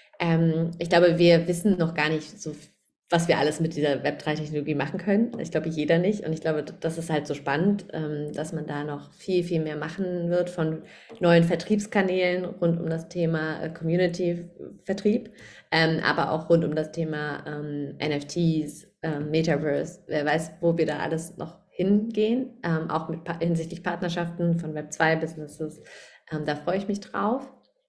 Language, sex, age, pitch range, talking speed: German, female, 30-49, 160-205 Hz, 150 wpm